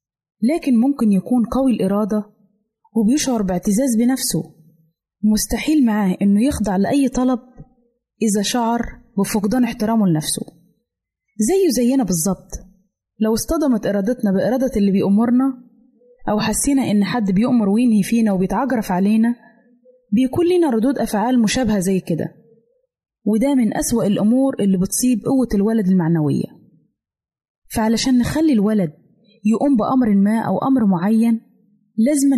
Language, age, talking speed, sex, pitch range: Arabic, 20-39, 115 wpm, female, 195-250 Hz